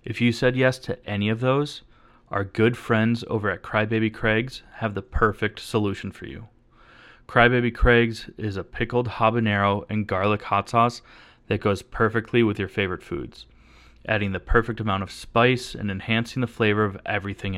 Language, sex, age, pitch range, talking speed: English, male, 20-39, 100-120 Hz, 170 wpm